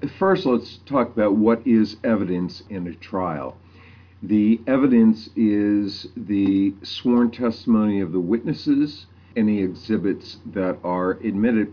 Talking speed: 125 wpm